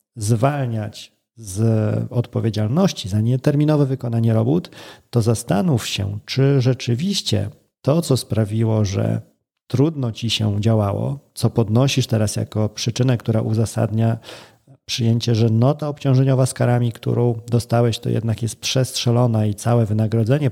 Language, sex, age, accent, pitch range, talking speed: Polish, male, 40-59, native, 115-135 Hz, 125 wpm